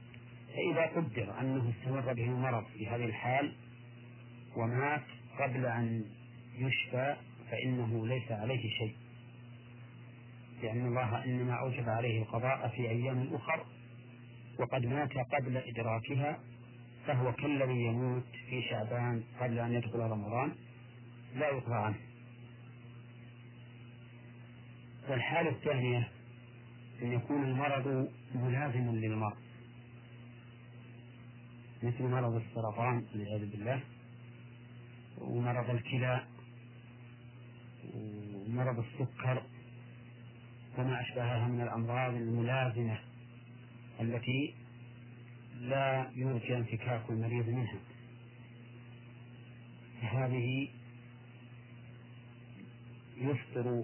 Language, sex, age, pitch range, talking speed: Arabic, male, 40-59, 120-125 Hz, 80 wpm